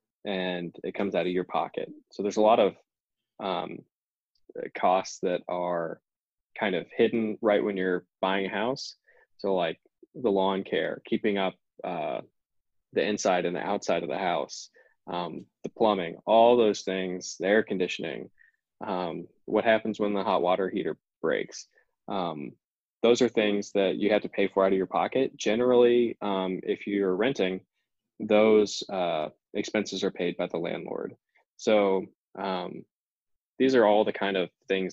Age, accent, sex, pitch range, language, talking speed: 20-39, American, male, 95-110 Hz, English, 165 wpm